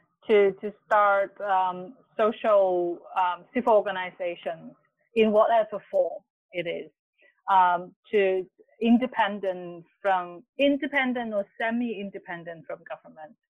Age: 30-49